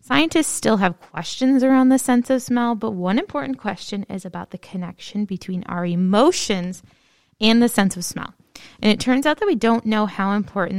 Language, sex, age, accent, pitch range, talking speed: English, female, 20-39, American, 180-240 Hz, 195 wpm